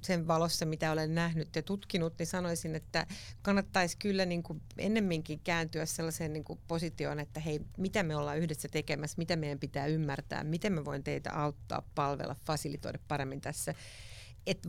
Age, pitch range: 40-59, 145-185 Hz